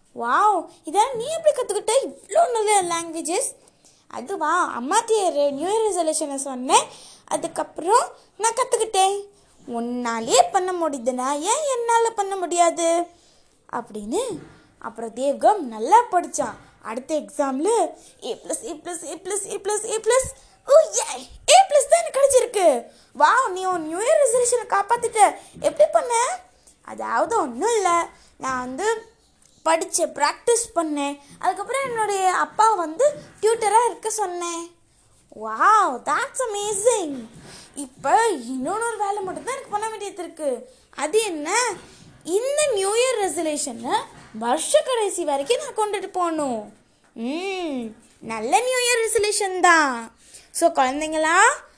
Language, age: Tamil, 20-39